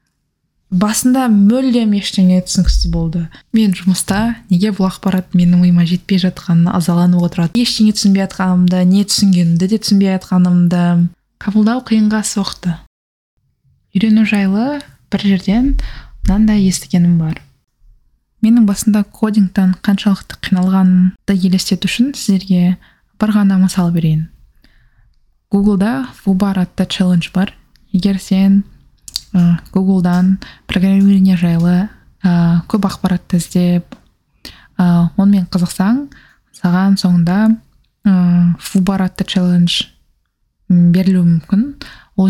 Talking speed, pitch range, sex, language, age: 95 wpm, 175-200 Hz, female, English, 20-39